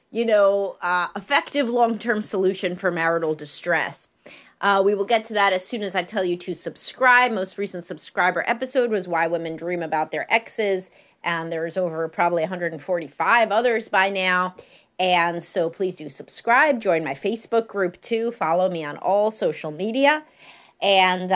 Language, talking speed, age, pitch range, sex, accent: English, 165 wpm, 30-49, 175-235 Hz, female, American